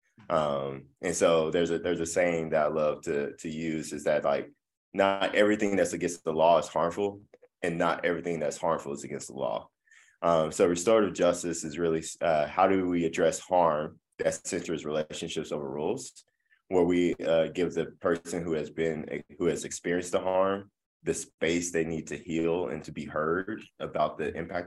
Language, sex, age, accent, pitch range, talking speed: English, male, 20-39, American, 80-90 Hz, 190 wpm